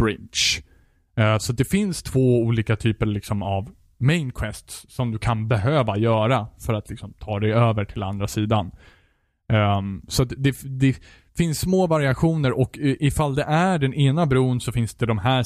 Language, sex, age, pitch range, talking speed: Swedish, male, 20-39, 105-130 Hz, 165 wpm